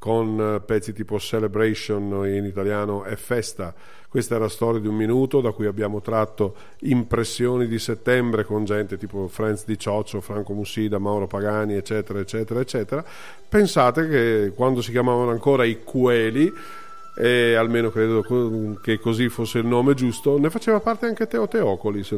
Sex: male